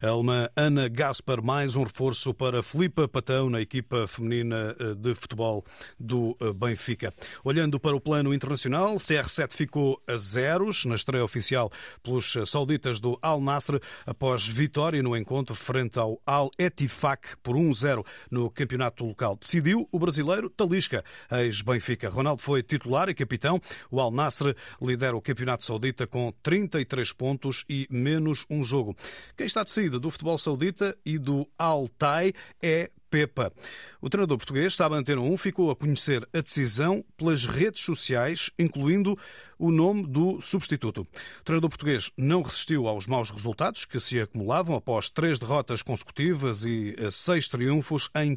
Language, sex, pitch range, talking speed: Portuguese, male, 120-155 Hz, 150 wpm